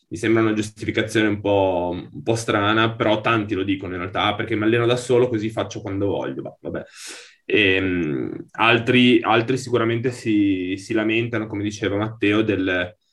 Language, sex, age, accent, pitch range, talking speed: Italian, male, 20-39, native, 100-115 Hz, 150 wpm